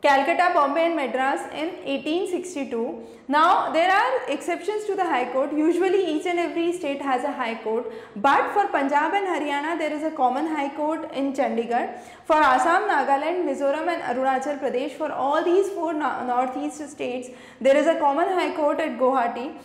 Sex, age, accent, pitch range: female, 20-39, Indian, 265-340 Hz